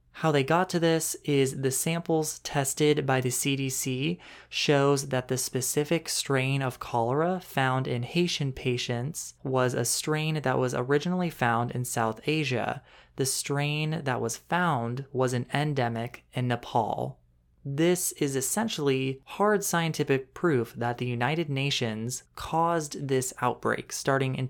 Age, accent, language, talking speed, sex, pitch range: 20-39, American, English, 140 wpm, male, 125-155 Hz